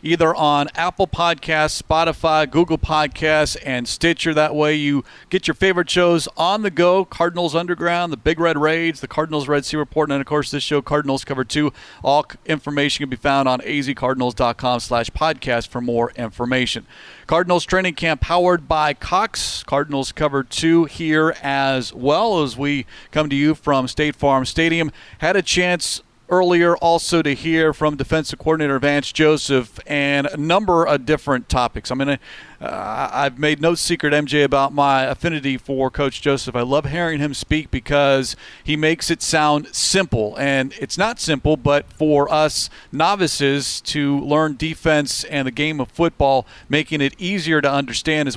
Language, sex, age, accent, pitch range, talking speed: English, male, 40-59, American, 140-160 Hz, 170 wpm